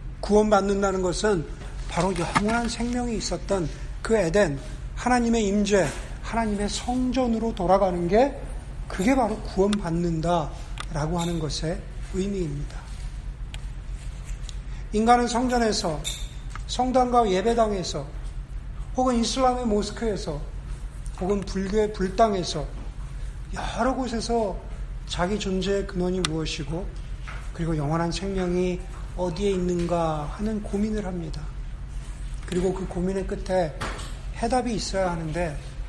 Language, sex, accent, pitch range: Korean, male, native, 150-205 Hz